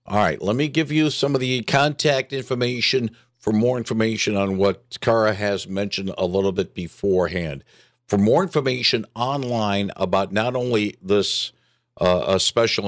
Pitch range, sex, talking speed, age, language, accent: 100-130 Hz, male, 160 wpm, 60-79, English, American